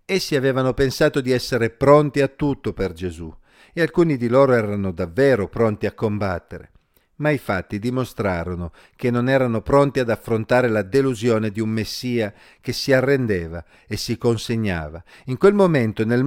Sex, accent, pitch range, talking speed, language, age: male, native, 100-140 Hz, 160 wpm, Italian, 50-69